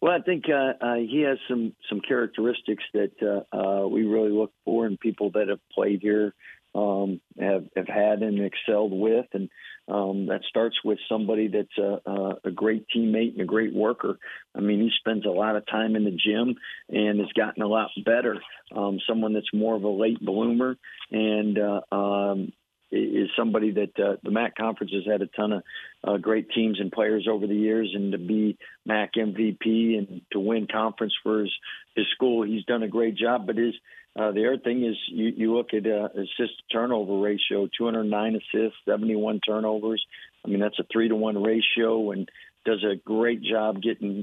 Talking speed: 190 wpm